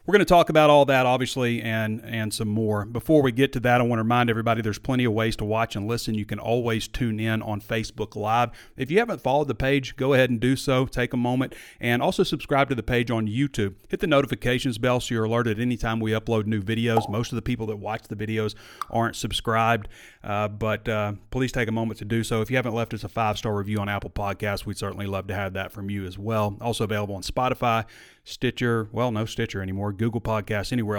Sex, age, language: male, 30-49, English